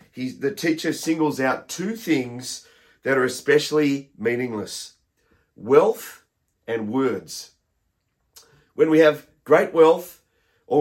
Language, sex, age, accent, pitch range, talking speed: English, male, 40-59, Australian, 135-180 Hz, 105 wpm